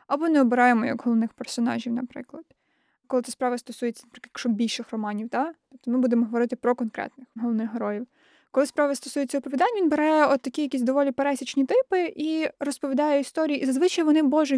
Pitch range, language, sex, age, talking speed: 250-310 Hz, Ukrainian, female, 20-39, 170 wpm